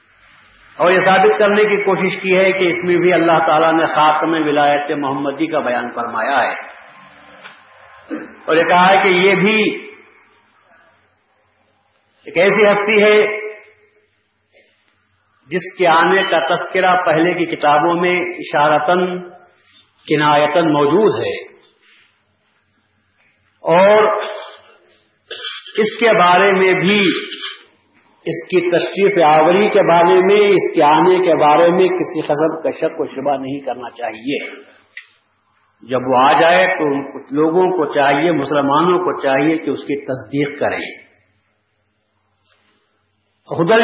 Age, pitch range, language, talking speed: 50-69, 140-200 Hz, Urdu, 125 wpm